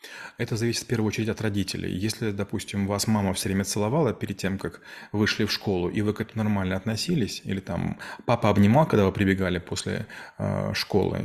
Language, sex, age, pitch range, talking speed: Russian, male, 30-49, 100-125 Hz, 190 wpm